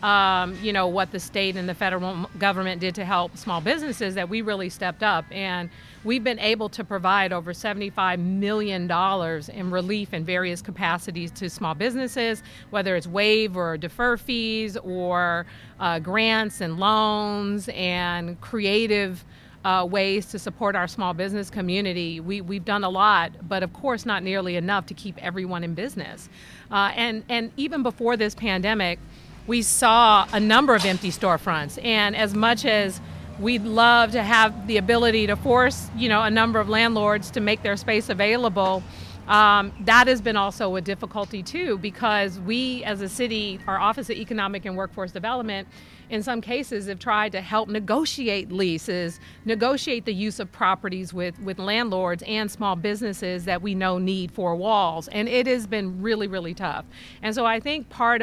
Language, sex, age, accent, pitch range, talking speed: English, female, 40-59, American, 185-220 Hz, 175 wpm